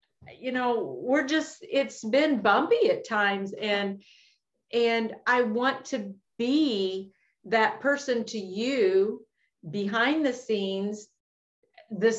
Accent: American